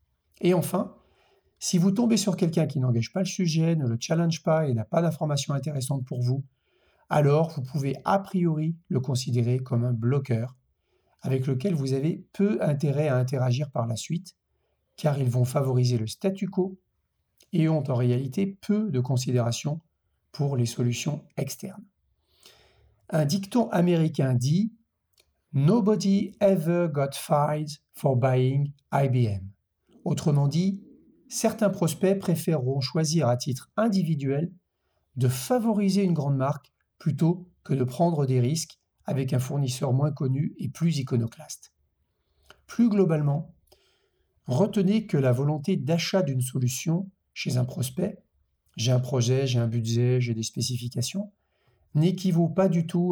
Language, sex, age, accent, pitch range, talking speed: French, male, 50-69, French, 125-175 Hz, 140 wpm